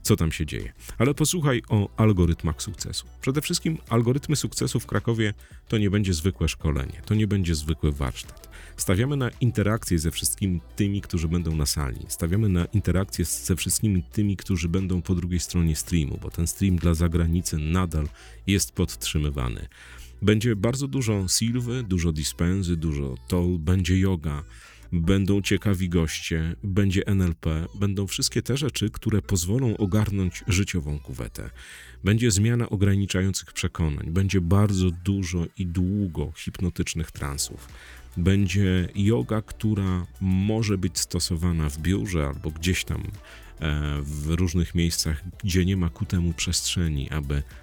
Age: 40-59